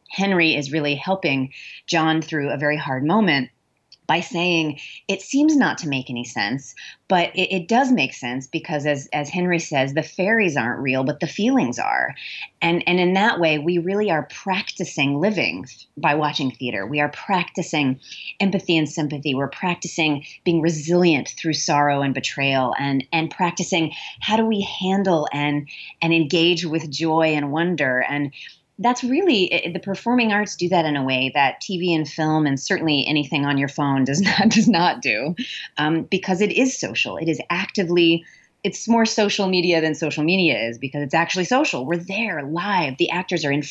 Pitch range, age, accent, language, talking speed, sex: 145-190 Hz, 30-49, American, English, 180 wpm, female